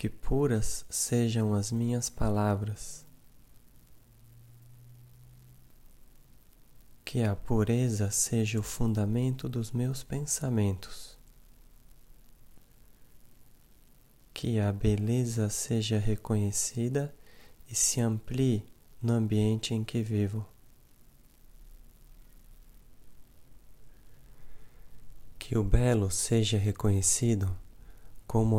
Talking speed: 70 wpm